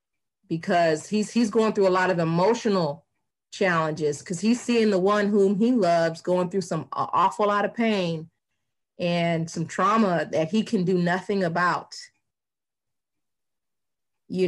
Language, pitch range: English, 180-225 Hz